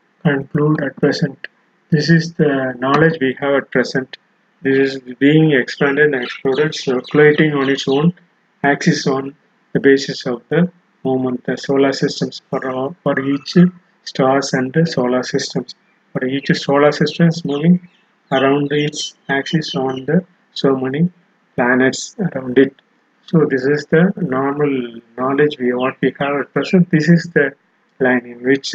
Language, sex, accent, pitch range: Tamil, male, native, 130-160 Hz